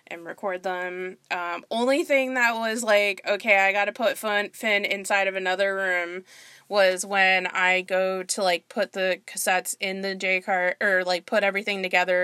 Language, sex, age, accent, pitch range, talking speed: English, female, 20-39, American, 180-220 Hz, 180 wpm